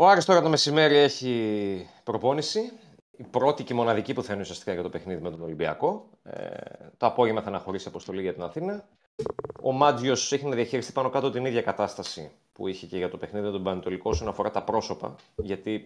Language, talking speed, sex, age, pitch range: Greek, 195 wpm, male, 30-49, 95-125 Hz